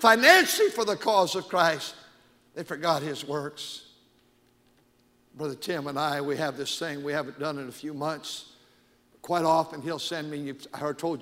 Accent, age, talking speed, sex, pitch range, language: American, 60-79, 170 wpm, male, 140-165 Hz, English